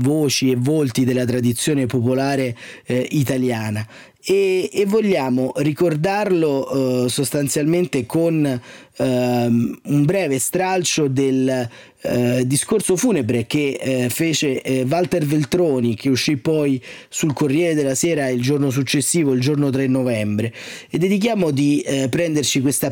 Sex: male